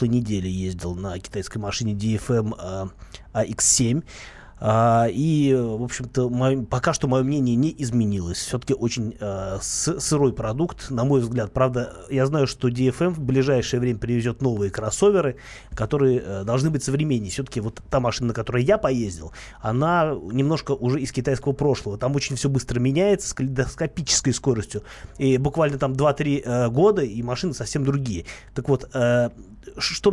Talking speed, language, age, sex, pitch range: 160 wpm, Russian, 30-49, male, 115-140 Hz